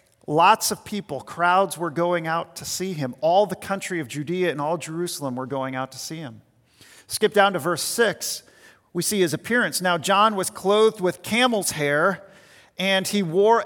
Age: 40-59